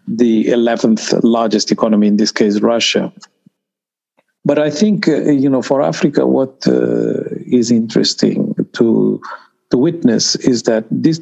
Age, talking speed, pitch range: 50-69, 140 wpm, 115-155 Hz